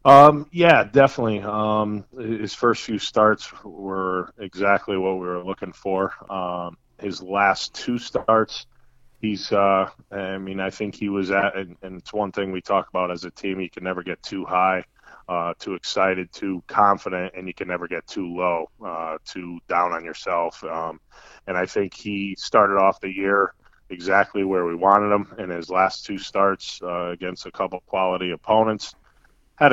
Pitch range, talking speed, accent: 95-105 Hz, 180 wpm, American